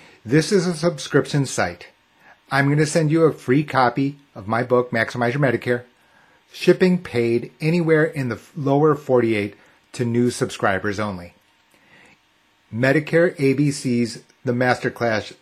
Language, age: English, 40-59